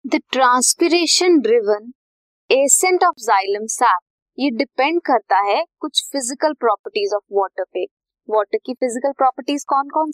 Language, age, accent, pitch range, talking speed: Hindi, 20-39, native, 220-325 Hz, 135 wpm